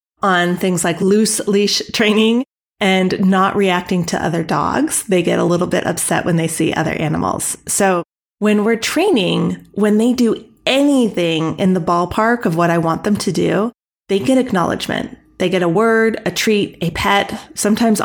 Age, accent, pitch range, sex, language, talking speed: 30-49, American, 175-220 Hz, female, English, 175 wpm